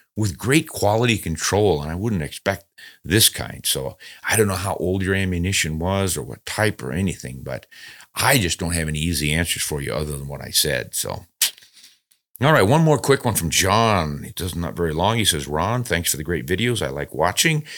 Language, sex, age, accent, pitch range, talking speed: English, male, 50-69, American, 85-115 Hz, 215 wpm